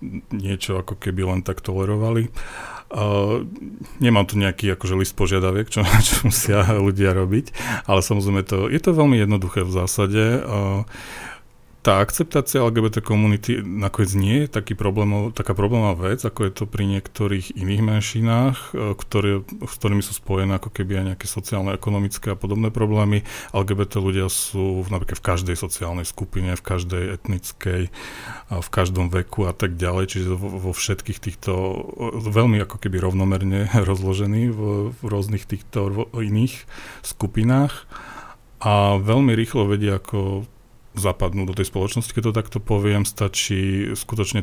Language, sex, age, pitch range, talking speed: Slovak, male, 40-59, 95-110 Hz, 145 wpm